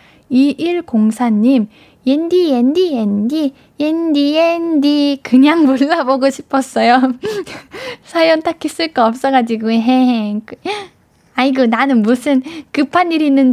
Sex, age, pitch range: female, 10-29, 235-310 Hz